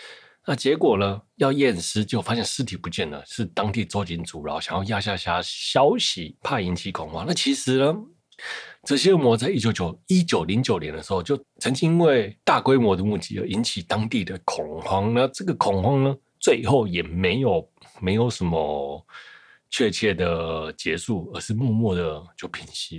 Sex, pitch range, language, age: male, 90-120 Hz, Chinese, 30-49